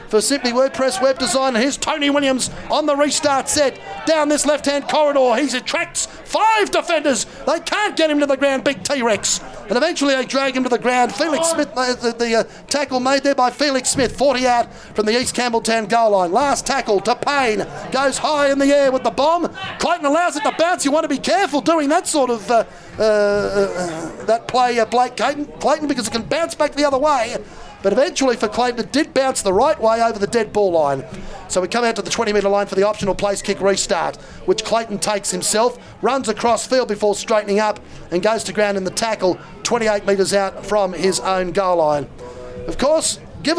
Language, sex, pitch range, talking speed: English, male, 210-285 Hz, 215 wpm